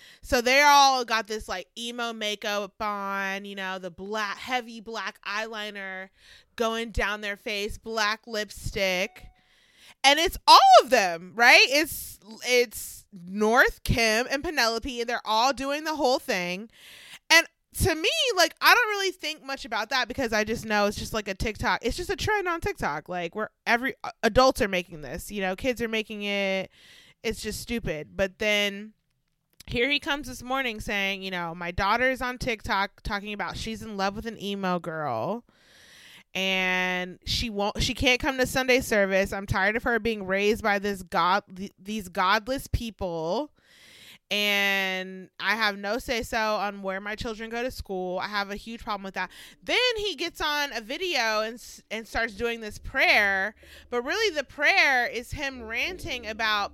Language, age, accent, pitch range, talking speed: English, 20-39, American, 195-245 Hz, 180 wpm